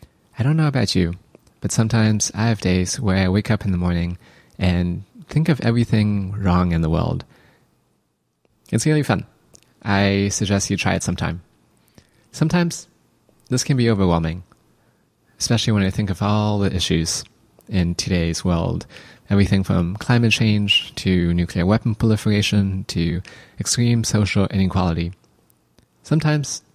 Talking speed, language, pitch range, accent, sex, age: 140 wpm, English, 90-115 Hz, American, male, 20-39